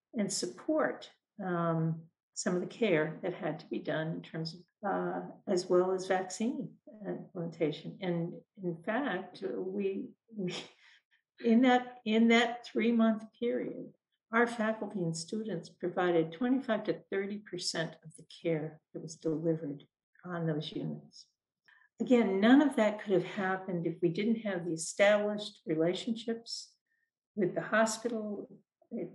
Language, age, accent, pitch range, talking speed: English, 60-79, American, 170-220 Hz, 140 wpm